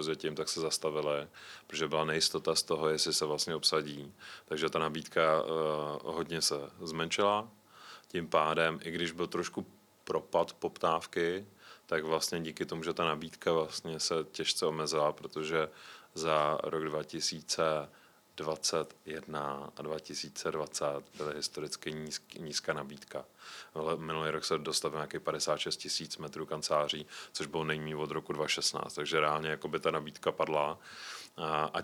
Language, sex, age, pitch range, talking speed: Czech, male, 30-49, 75-85 Hz, 135 wpm